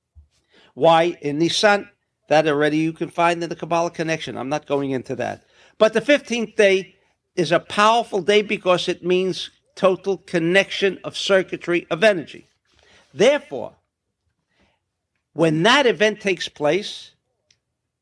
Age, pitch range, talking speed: 60-79, 145-210 Hz, 135 wpm